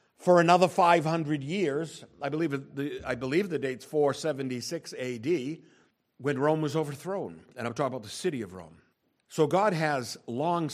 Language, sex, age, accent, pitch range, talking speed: English, male, 50-69, American, 130-180 Hz, 150 wpm